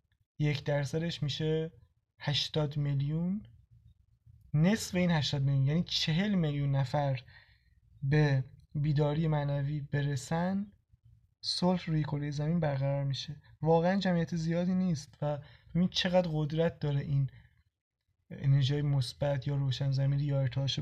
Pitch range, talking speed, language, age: 125-155 Hz, 115 wpm, Persian, 20-39